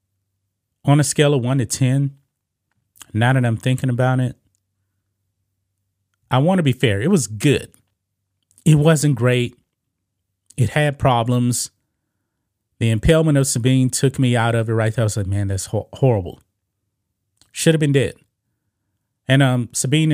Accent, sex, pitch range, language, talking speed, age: American, male, 100-135 Hz, English, 150 wpm, 30-49